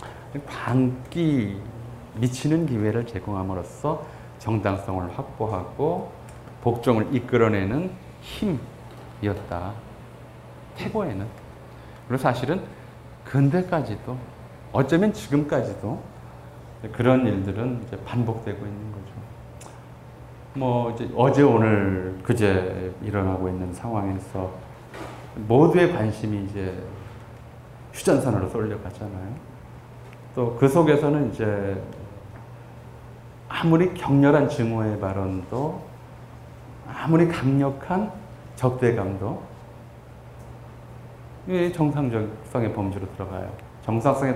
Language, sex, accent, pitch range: Korean, male, native, 105-130 Hz